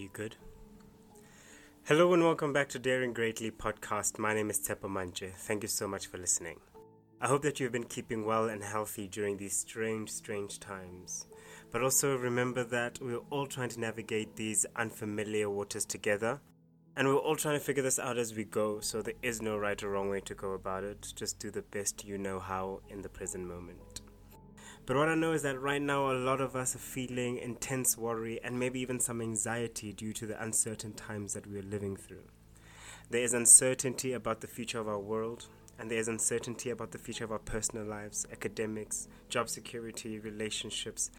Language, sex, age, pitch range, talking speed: English, male, 20-39, 100-125 Hz, 200 wpm